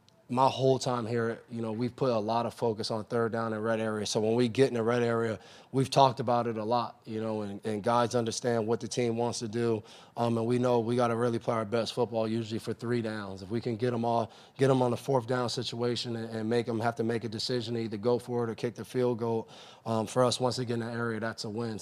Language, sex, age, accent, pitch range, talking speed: English, male, 20-39, American, 110-125 Hz, 290 wpm